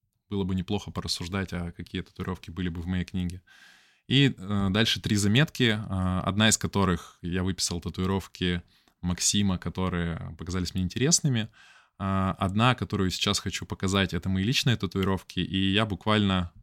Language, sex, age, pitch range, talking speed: Russian, male, 20-39, 90-110 Hz, 150 wpm